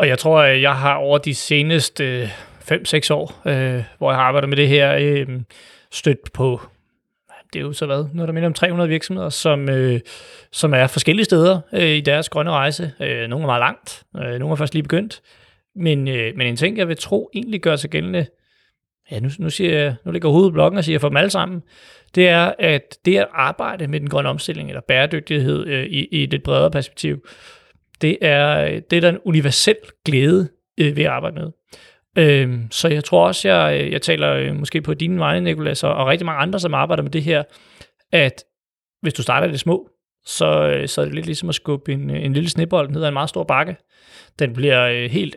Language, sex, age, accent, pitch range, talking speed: Danish, male, 30-49, native, 135-170 Hz, 195 wpm